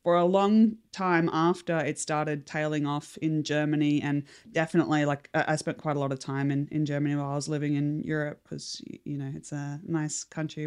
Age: 20-39